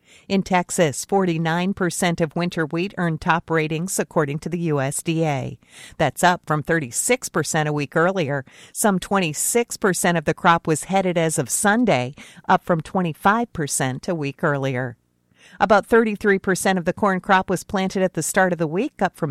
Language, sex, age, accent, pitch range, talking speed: English, female, 50-69, American, 155-195 Hz, 160 wpm